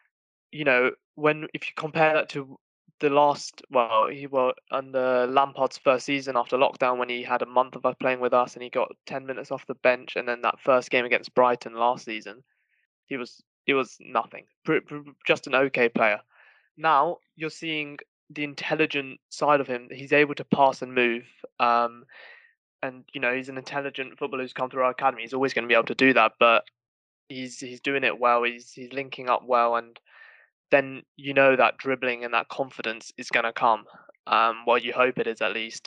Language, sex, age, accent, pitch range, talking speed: English, male, 20-39, British, 120-145 Hz, 205 wpm